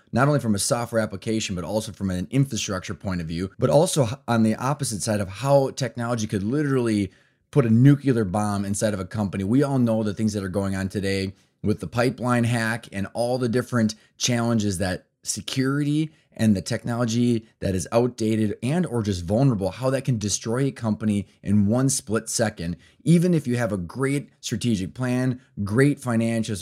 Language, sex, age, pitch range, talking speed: English, male, 20-39, 100-125 Hz, 190 wpm